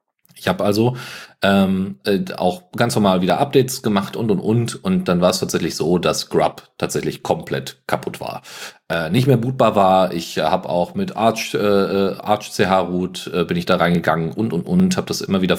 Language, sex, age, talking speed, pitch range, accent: German, male, 40-59, 195 wpm, 90-120 Hz, German